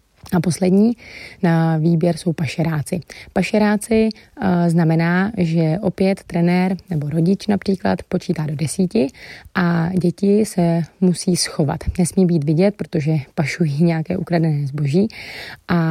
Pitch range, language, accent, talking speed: 160-185 Hz, Czech, native, 115 wpm